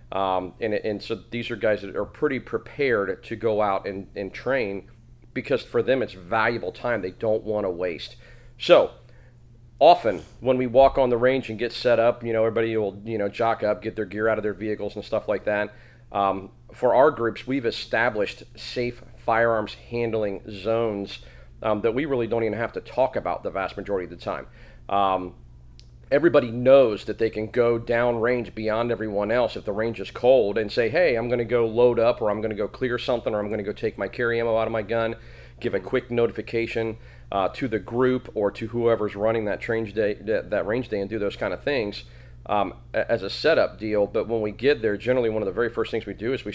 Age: 40-59